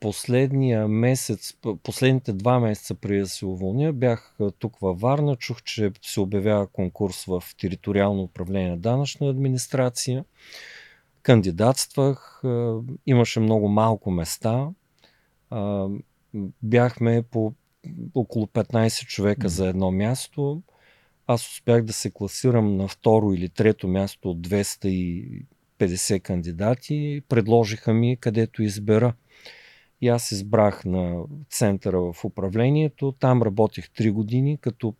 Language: Bulgarian